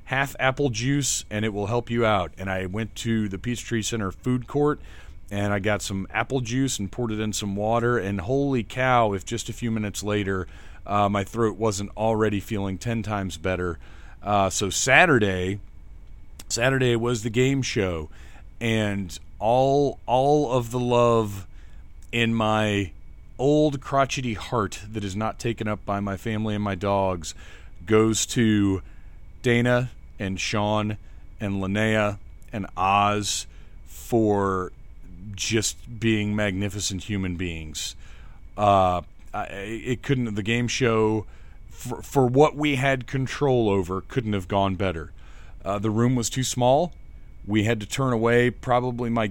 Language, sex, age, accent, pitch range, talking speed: English, male, 40-59, American, 95-115 Hz, 150 wpm